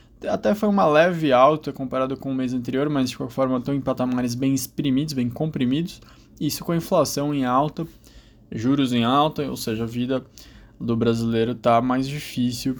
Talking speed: 185 wpm